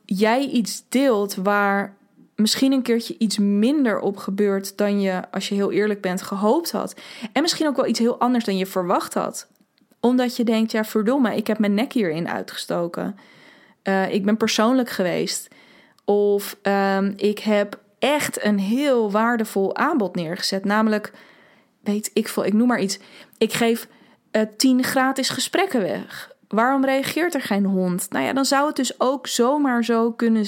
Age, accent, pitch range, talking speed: 20-39, Dutch, 205-245 Hz, 175 wpm